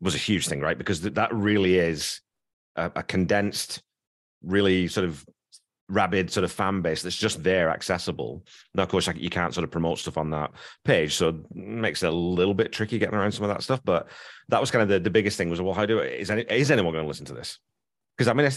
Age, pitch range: 30-49, 85-105 Hz